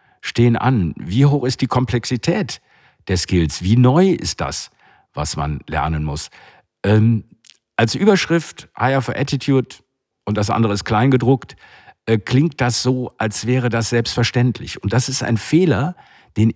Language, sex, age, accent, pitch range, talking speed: German, male, 50-69, German, 105-135 Hz, 155 wpm